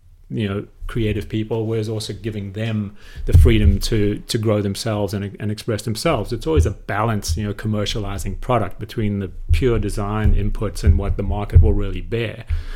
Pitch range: 100-120 Hz